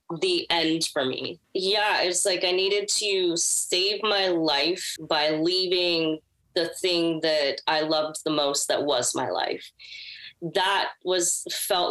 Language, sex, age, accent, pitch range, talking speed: English, female, 20-39, American, 145-175 Hz, 145 wpm